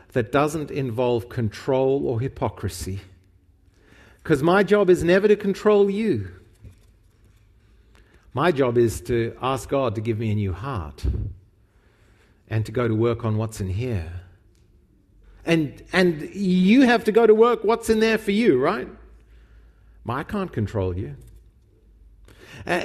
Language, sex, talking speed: English, male, 140 wpm